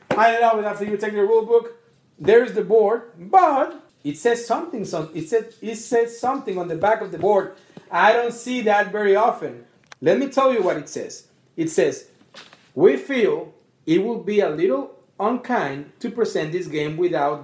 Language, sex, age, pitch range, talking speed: English, male, 30-49, 190-270 Hz, 195 wpm